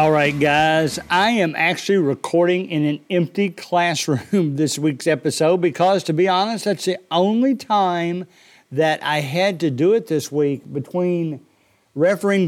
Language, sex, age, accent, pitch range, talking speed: English, male, 50-69, American, 155-185 Hz, 155 wpm